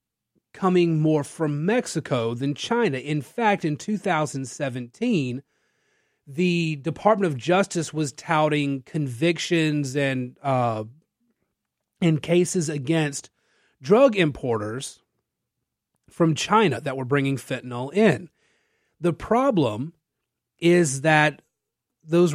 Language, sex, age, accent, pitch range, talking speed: English, male, 30-49, American, 135-175 Hz, 95 wpm